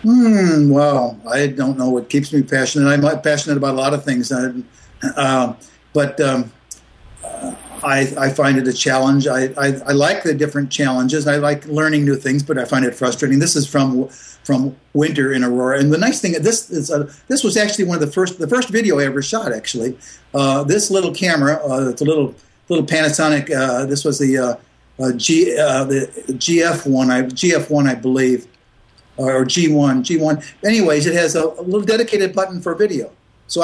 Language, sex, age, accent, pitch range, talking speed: English, male, 60-79, American, 135-165 Hz, 195 wpm